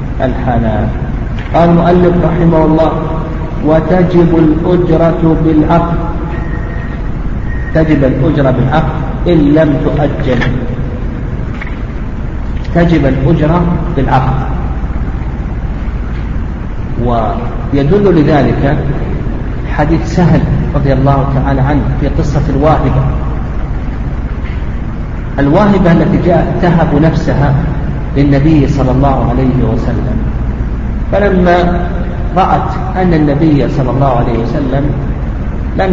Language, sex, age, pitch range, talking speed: Arabic, male, 50-69, 130-160 Hz, 80 wpm